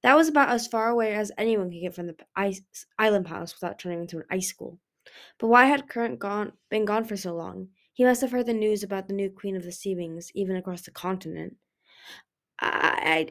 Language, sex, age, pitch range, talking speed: English, female, 20-39, 180-225 Hz, 220 wpm